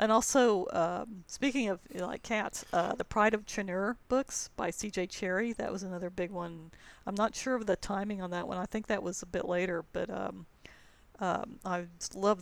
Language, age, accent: English, 50-69, American